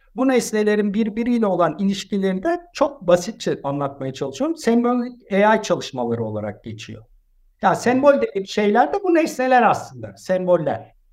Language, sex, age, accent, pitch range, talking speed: Turkish, male, 60-79, native, 175-230 Hz, 130 wpm